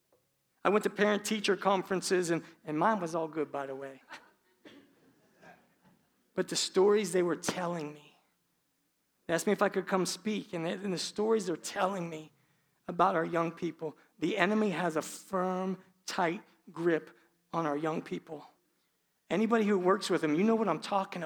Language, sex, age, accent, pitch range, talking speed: English, male, 50-69, American, 165-220 Hz, 170 wpm